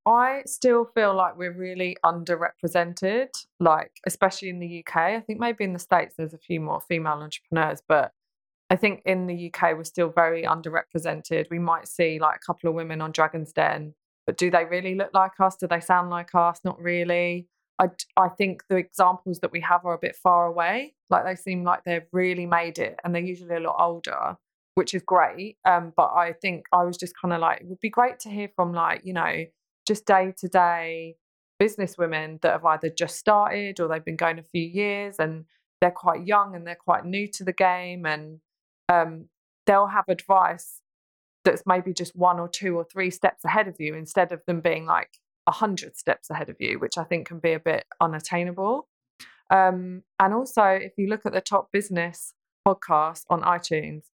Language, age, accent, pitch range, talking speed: English, 20-39, British, 170-190 Hz, 205 wpm